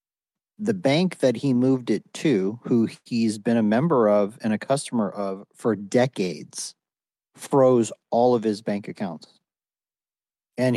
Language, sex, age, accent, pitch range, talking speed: English, male, 40-59, American, 100-125 Hz, 145 wpm